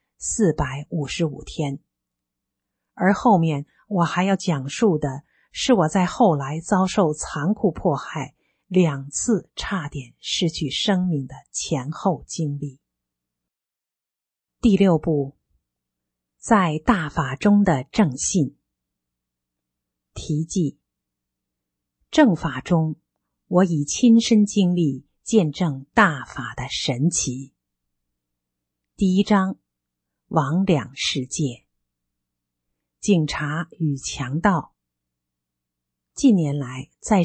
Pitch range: 120-185 Hz